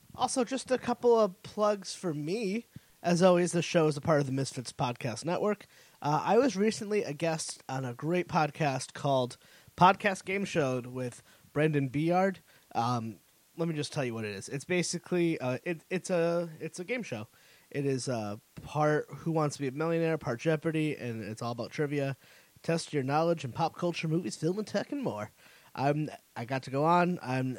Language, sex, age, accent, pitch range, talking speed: English, male, 20-39, American, 130-165 Hz, 200 wpm